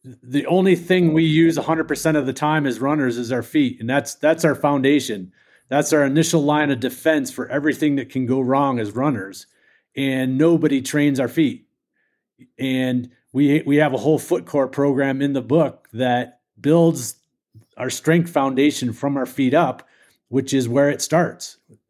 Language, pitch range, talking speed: English, 130-165 Hz, 175 wpm